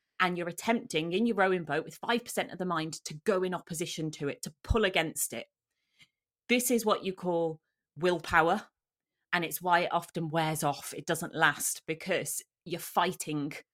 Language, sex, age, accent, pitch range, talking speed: English, female, 30-49, British, 155-185 Hz, 185 wpm